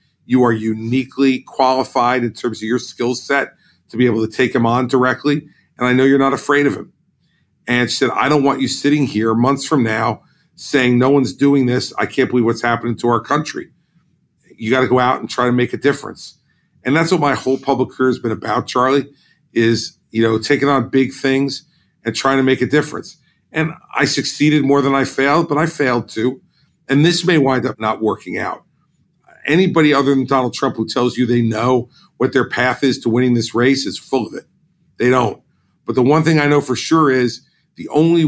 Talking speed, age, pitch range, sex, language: 220 wpm, 50-69, 120-145 Hz, male, English